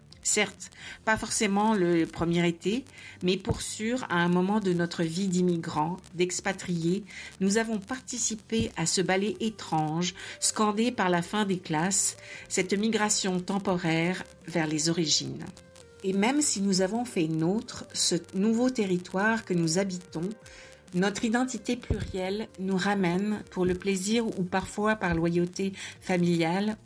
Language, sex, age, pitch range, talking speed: French, female, 50-69, 175-210 Hz, 140 wpm